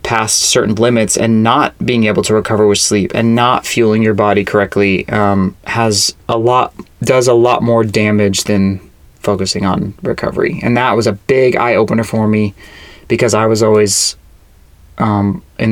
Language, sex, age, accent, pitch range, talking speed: English, male, 20-39, American, 105-130 Hz, 170 wpm